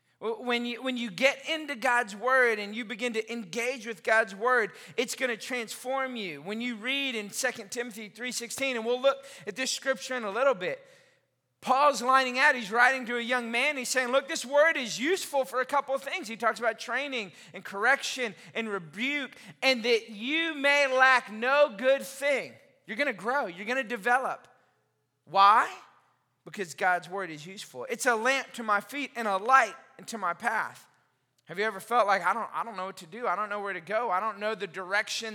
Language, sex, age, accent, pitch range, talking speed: English, male, 30-49, American, 180-255 Hz, 210 wpm